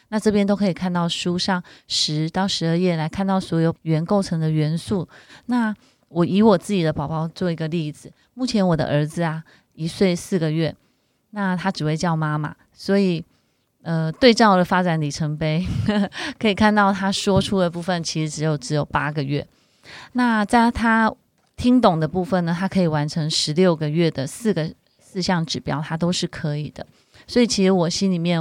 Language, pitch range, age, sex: Chinese, 160-200 Hz, 20-39, female